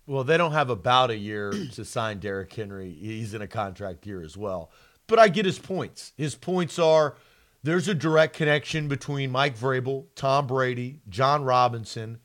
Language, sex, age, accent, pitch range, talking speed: English, male, 40-59, American, 145-195 Hz, 180 wpm